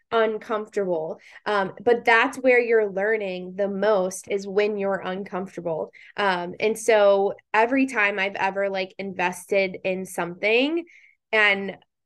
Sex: female